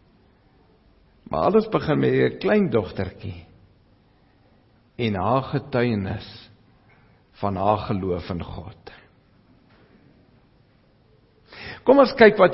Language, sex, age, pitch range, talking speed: English, male, 60-79, 105-140 Hz, 85 wpm